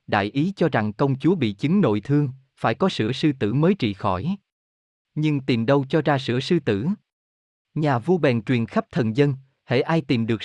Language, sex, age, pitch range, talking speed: Vietnamese, male, 20-39, 110-155 Hz, 210 wpm